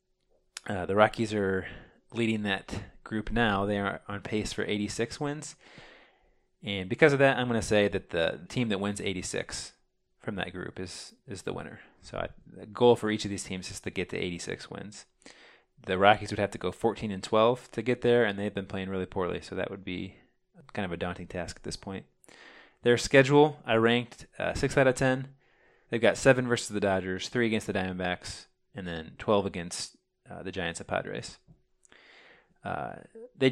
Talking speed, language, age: 195 wpm, English, 20-39